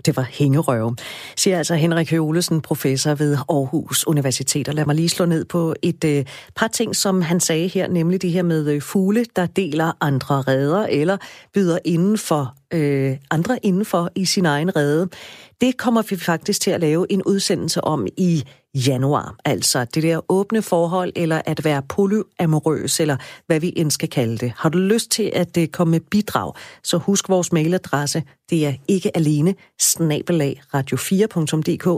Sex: female